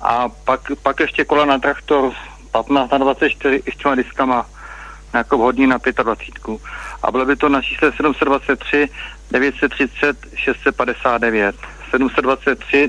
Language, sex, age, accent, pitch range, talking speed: Czech, male, 30-49, native, 95-150 Hz, 125 wpm